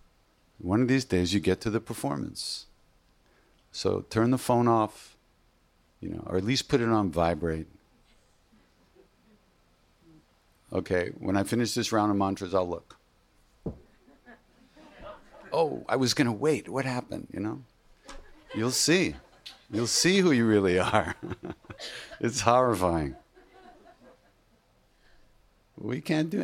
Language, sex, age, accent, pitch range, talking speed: English, male, 50-69, American, 95-120 Hz, 125 wpm